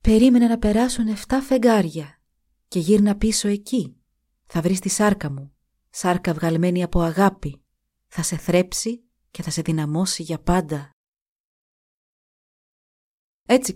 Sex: female